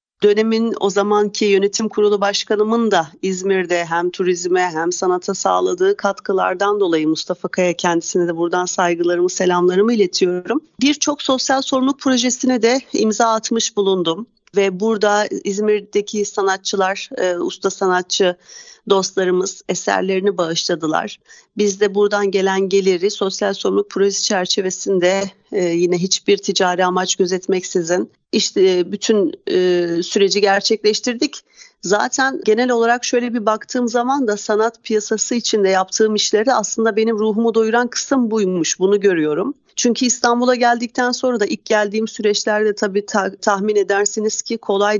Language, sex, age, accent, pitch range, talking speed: Turkish, female, 40-59, native, 185-225 Hz, 130 wpm